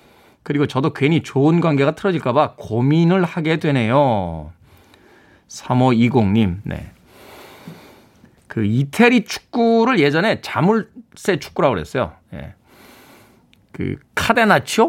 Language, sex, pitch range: Korean, male, 125-190 Hz